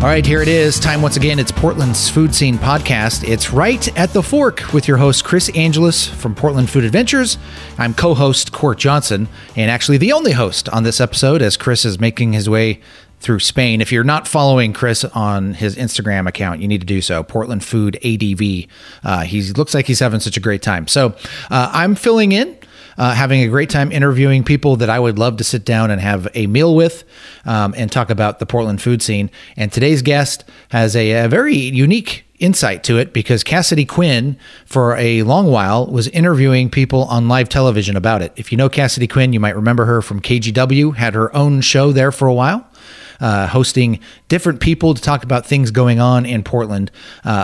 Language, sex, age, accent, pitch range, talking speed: English, male, 30-49, American, 110-140 Hz, 205 wpm